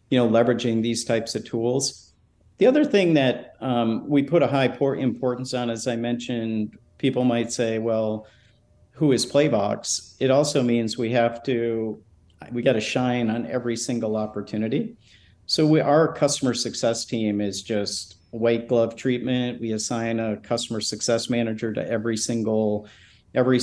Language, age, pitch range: English, 50-69, 110-125 Hz